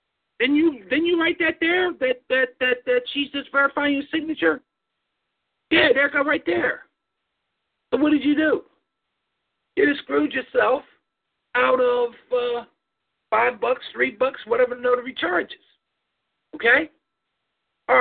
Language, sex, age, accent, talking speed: English, male, 50-69, American, 145 wpm